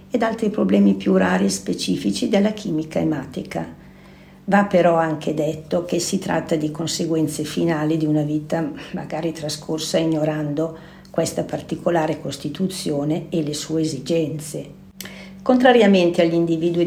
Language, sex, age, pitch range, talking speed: Italian, female, 50-69, 155-190 Hz, 130 wpm